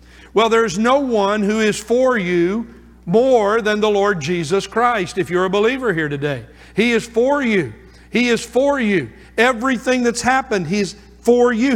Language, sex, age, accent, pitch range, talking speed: English, male, 50-69, American, 195-235 Hz, 175 wpm